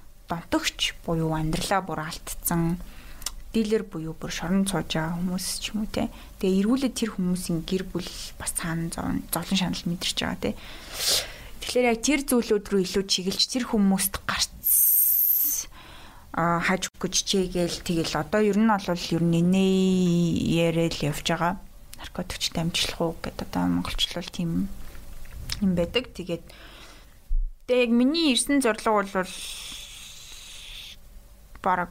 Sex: female